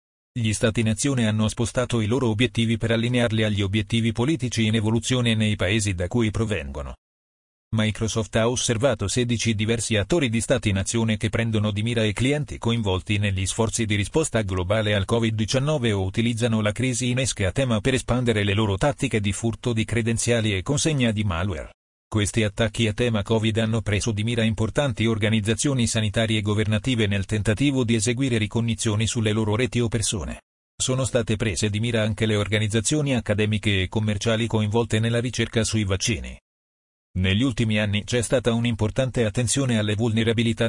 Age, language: 40-59, Italian